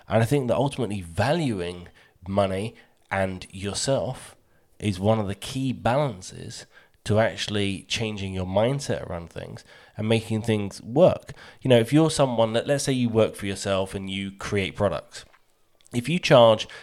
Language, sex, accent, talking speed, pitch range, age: English, male, British, 160 wpm, 100-125 Hz, 20-39